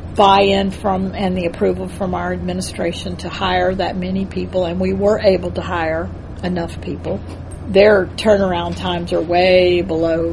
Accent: American